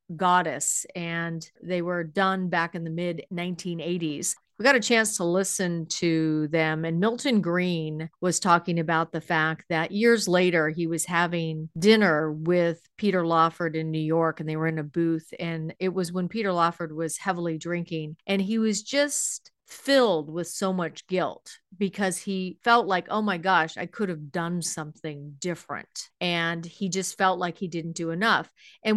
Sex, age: female, 40-59